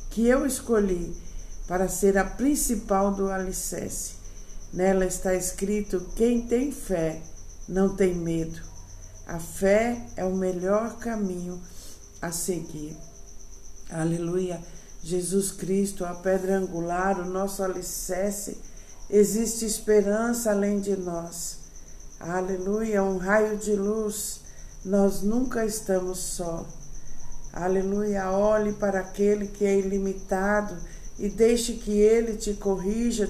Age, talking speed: 60-79, 110 wpm